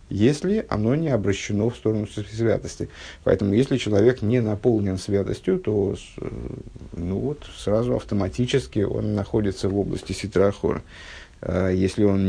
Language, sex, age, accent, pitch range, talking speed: Russian, male, 50-69, native, 100-130 Hz, 120 wpm